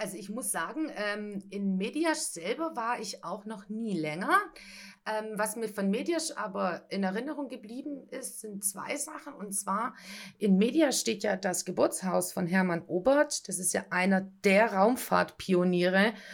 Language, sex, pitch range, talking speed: German, female, 185-210 Hz, 155 wpm